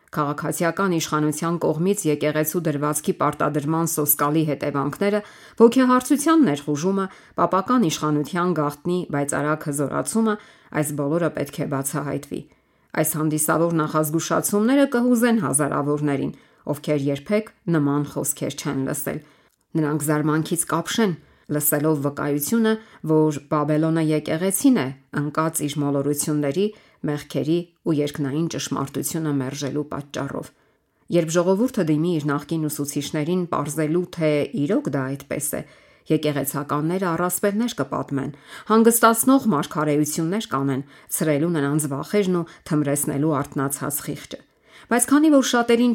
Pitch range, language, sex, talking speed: 145-180 Hz, English, female, 80 wpm